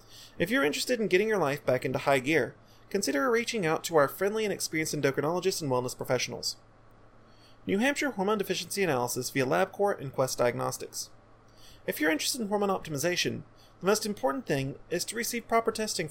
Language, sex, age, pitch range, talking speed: English, male, 30-49, 130-210 Hz, 180 wpm